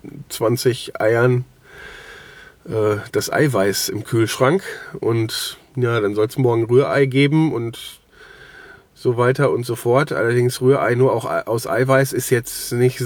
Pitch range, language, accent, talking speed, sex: 105-140 Hz, German, German, 140 wpm, male